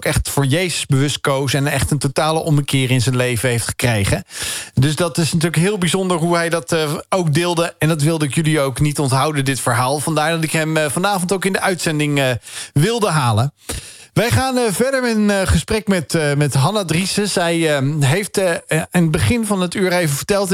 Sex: male